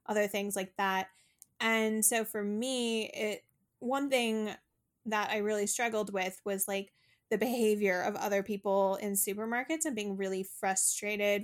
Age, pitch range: 20-39, 195-220 Hz